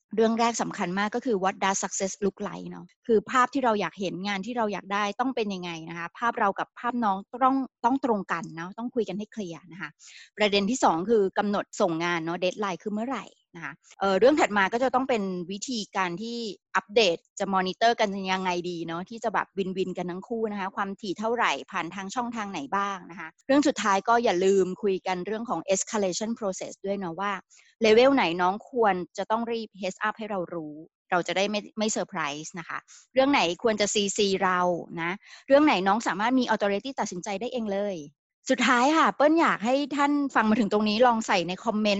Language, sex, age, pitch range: Thai, female, 20-39, 190-245 Hz